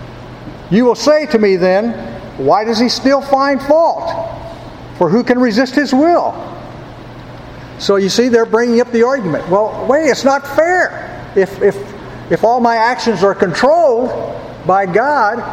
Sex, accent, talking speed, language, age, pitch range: male, American, 160 wpm, English, 50-69, 185-255 Hz